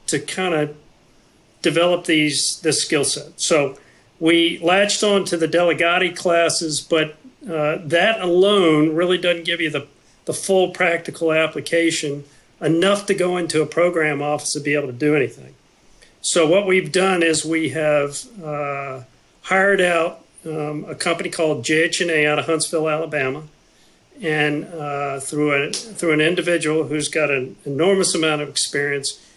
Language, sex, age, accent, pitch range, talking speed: English, male, 50-69, American, 140-170 Hz, 155 wpm